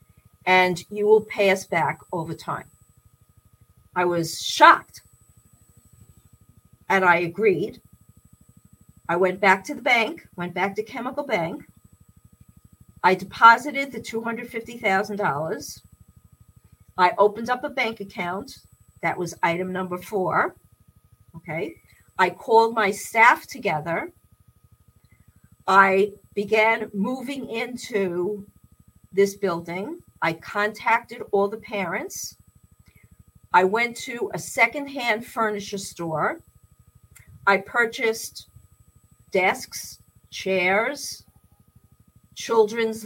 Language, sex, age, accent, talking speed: English, female, 50-69, American, 95 wpm